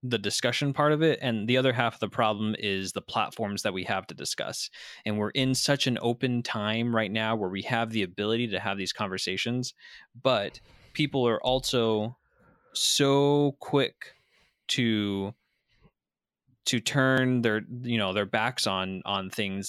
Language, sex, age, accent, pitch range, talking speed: English, male, 20-39, American, 105-125 Hz, 170 wpm